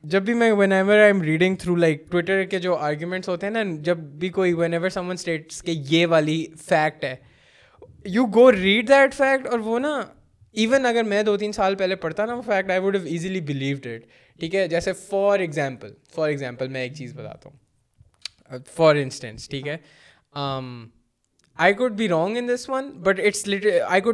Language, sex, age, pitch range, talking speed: Urdu, male, 20-39, 130-180 Hz, 195 wpm